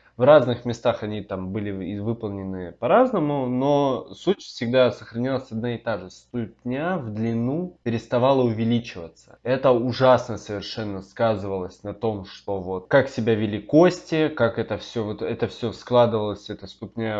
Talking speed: 140 wpm